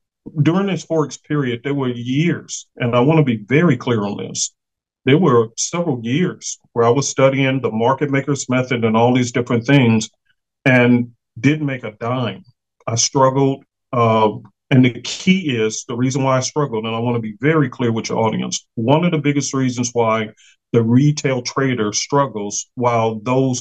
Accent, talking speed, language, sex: American, 185 wpm, English, male